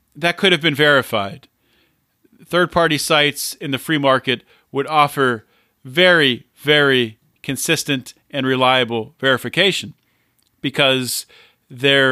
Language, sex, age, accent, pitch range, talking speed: English, male, 40-59, American, 130-165 Hz, 100 wpm